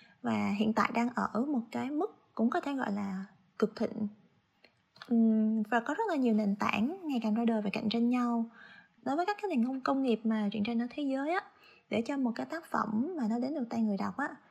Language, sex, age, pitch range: Vietnamese, female, 20-39, 215-260 Hz